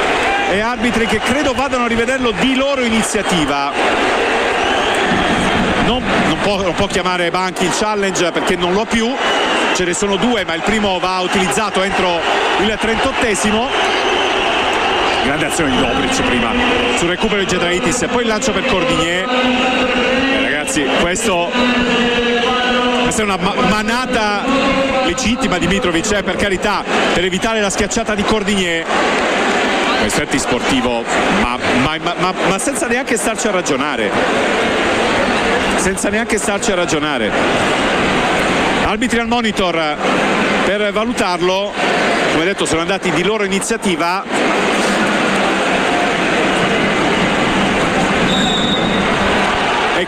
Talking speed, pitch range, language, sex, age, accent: 120 wpm, 190-255 Hz, Italian, male, 50-69, native